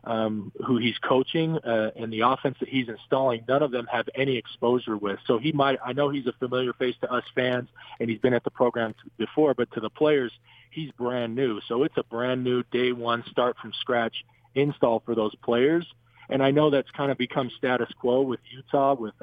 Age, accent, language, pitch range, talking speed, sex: 40-59, American, English, 115-130 Hz, 220 wpm, male